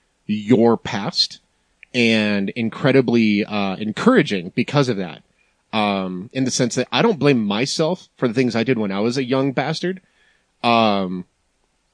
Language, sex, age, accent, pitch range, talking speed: English, male, 30-49, American, 105-130 Hz, 150 wpm